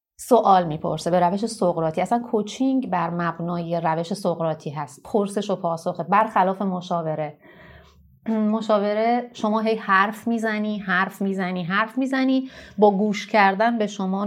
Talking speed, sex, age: 130 wpm, female, 30-49